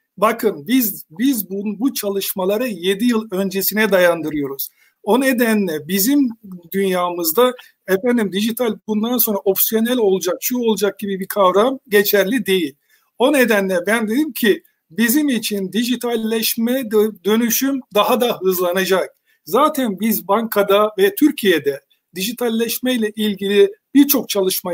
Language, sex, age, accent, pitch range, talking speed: Turkish, male, 50-69, native, 190-240 Hz, 115 wpm